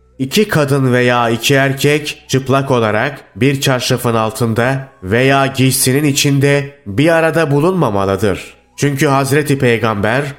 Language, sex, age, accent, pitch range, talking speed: Turkish, male, 30-49, native, 120-145 Hz, 110 wpm